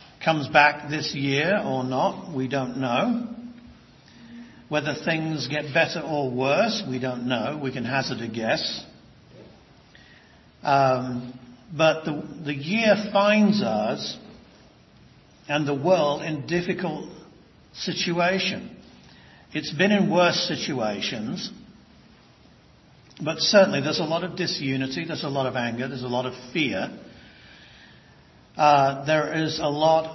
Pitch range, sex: 135-160 Hz, male